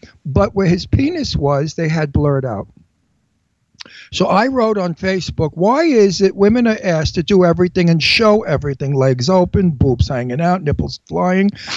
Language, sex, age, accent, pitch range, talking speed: English, male, 60-79, American, 145-205 Hz, 170 wpm